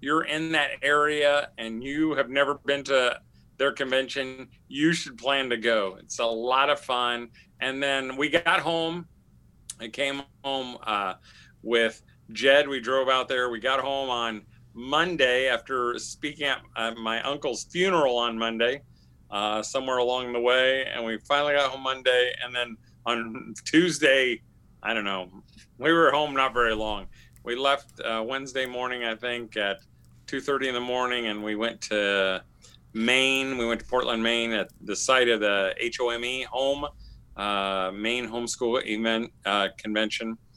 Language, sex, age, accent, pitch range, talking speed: English, male, 40-59, American, 115-135 Hz, 165 wpm